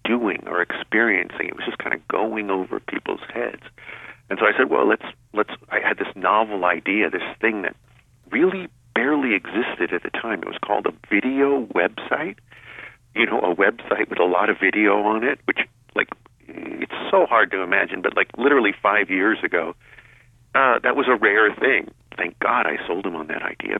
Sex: male